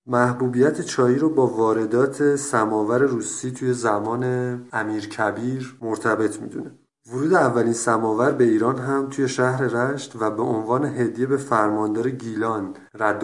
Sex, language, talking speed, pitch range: male, Persian, 135 wpm, 105-130 Hz